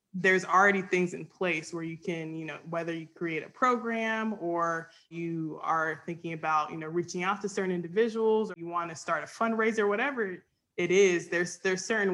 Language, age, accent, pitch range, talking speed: English, 20-39, American, 160-185 Hz, 200 wpm